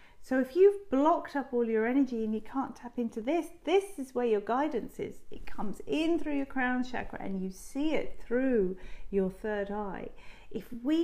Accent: British